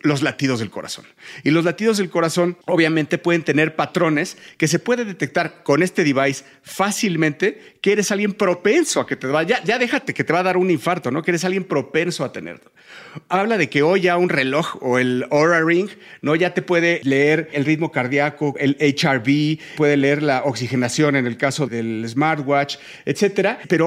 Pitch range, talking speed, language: 145-185 Hz, 195 wpm, Spanish